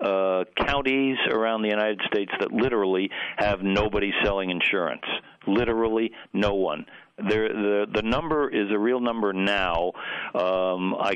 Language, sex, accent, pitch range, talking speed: English, male, American, 95-115 Hz, 135 wpm